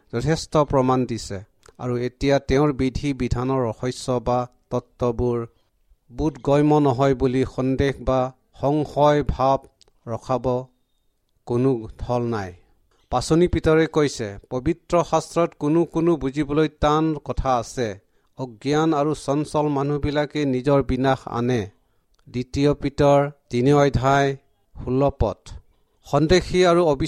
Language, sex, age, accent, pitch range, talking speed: English, male, 60-79, Indian, 125-150 Hz, 80 wpm